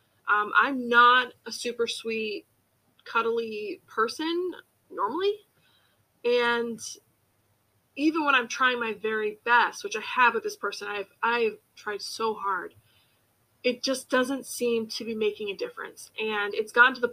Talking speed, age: 145 wpm, 20-39